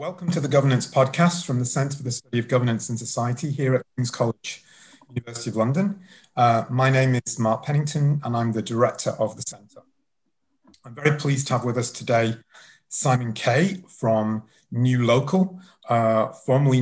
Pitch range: 115-135 Hz